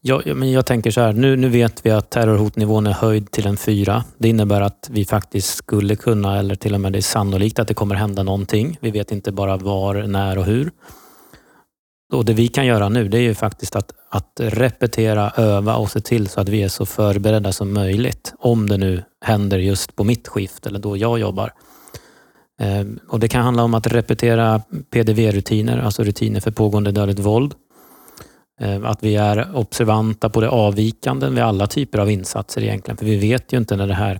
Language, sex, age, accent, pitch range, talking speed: Swedish, male, 30-49, native, 100-115 Hz, 205 wpm